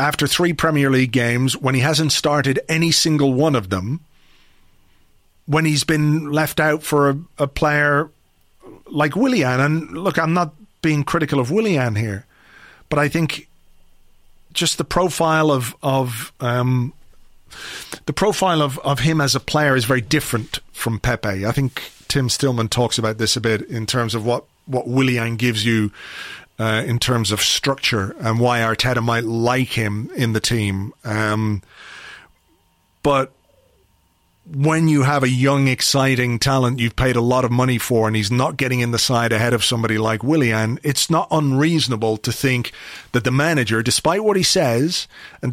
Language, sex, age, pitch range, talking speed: English, male, 40-59, 115-150 Hz, 170 wpm